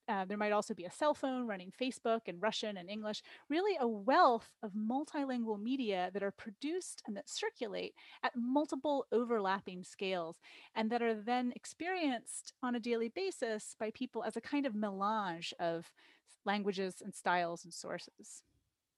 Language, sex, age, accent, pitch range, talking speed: English, female, 30-49, American, 190-255 Hz, 165 wpm